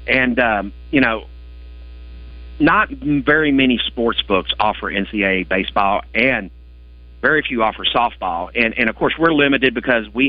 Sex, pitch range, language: male, 85-135 Hz, English